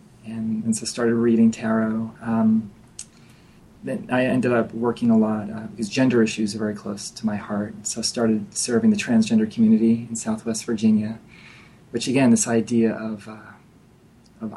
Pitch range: 110-120 Hz